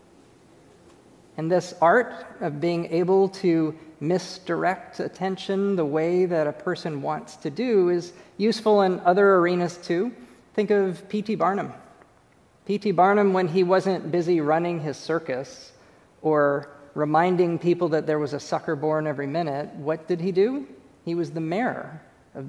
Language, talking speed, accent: English, 150 wpm, American